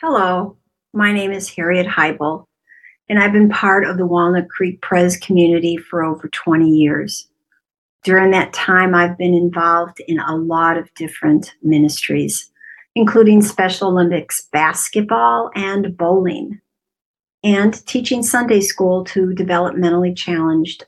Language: English